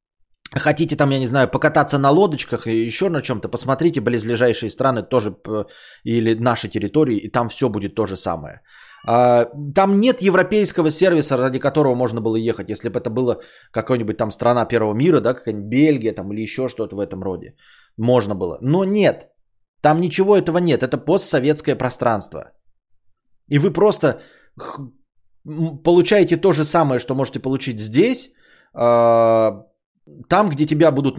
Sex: male